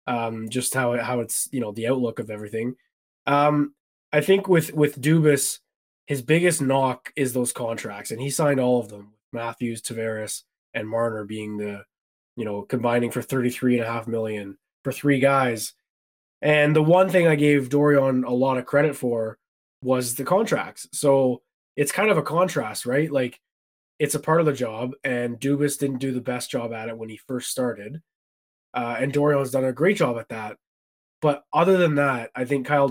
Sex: male